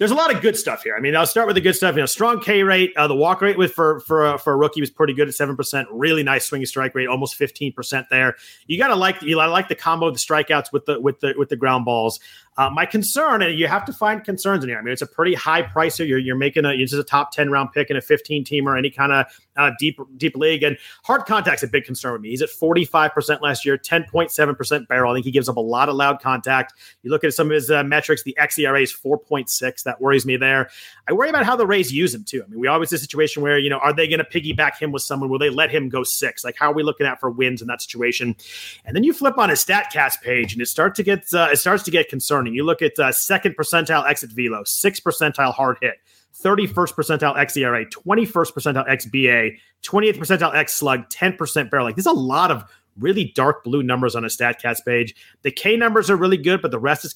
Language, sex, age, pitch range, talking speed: English, male, 30-49, 135-165 Hz, 275 wpm